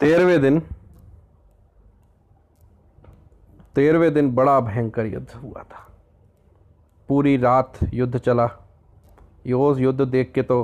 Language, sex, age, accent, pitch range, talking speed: Hindi, male, 40-59, native, 95-135 Hz, 100 wpm